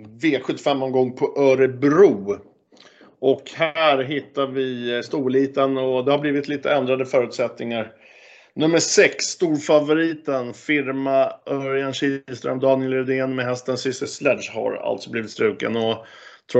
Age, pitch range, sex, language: 50-69, 120-145 Hz, male, Swedish